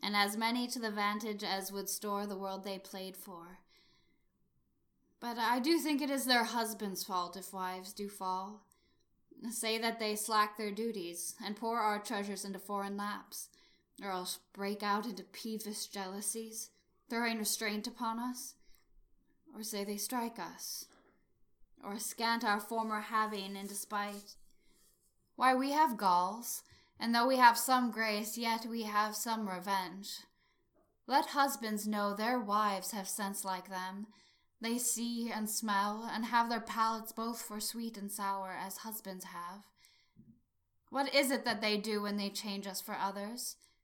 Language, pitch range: English, 200-235 Hz